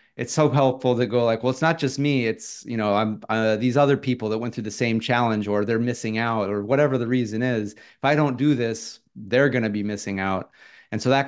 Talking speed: 255 wpm